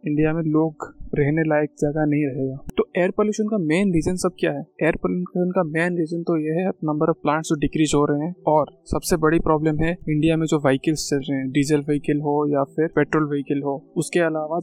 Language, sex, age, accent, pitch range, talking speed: Hindi, male, 20-39, native, 145-165 Hz, 195 wpm